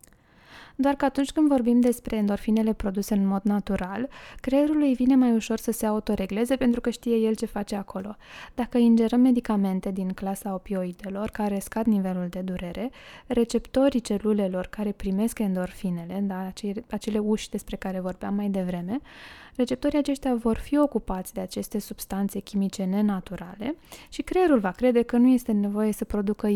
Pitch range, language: 200-235 Hz, Romanian